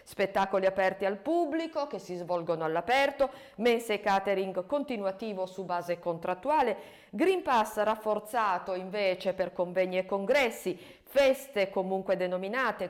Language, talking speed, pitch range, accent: Italian, 120 wpm, 185-255 Hz, native